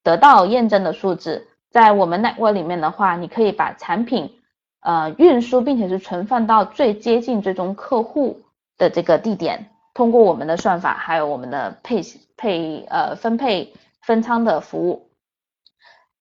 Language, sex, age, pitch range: Chinese, female, 20-39, 185-235 Hz